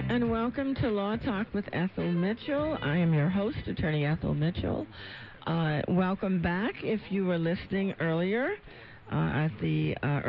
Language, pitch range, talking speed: English, 140-190 Hz, 155 wpm